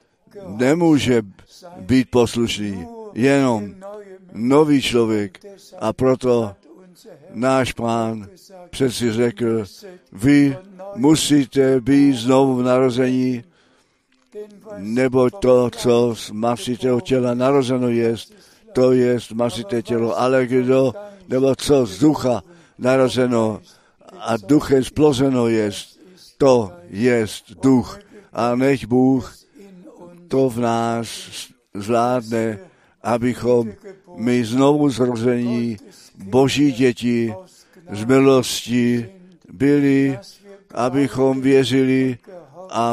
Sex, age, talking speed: male, 60-79, 90 wpm